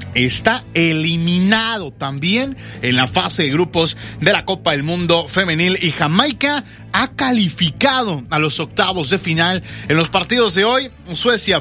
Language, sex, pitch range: Spanish, male, 175-220 Hz